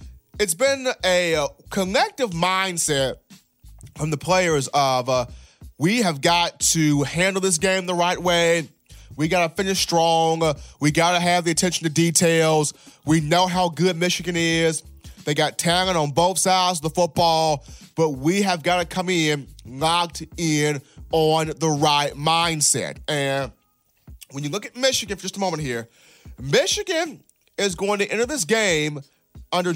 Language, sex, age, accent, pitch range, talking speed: English, male, 30-49, American, 150-185 Hz, 155 wpm